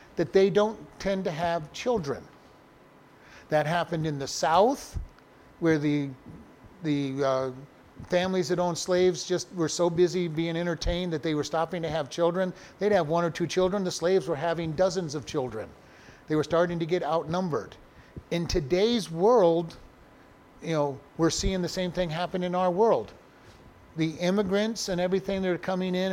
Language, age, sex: English, 50-69, male